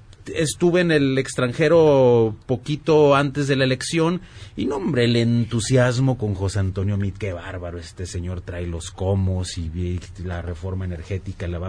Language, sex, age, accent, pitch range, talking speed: Spanish, male, 30-49, Mexican, 100-140 Hz, 160 wpm